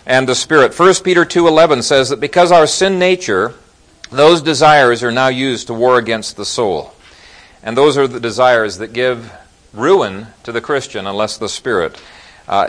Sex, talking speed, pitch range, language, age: male, 175 wpm, 120-170 Hz, English, 50-69